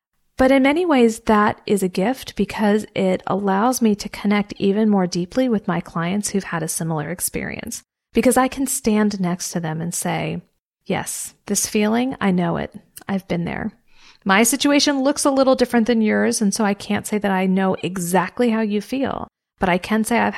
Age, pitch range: 40-59, 180-220 Hz